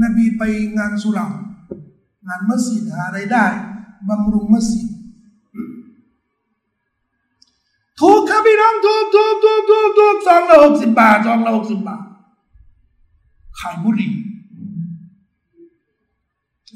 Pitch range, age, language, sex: 205-320 Hz, 60-79, Thai, male